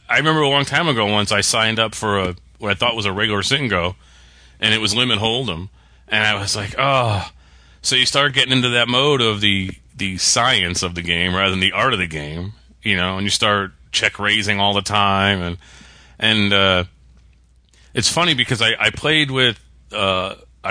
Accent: American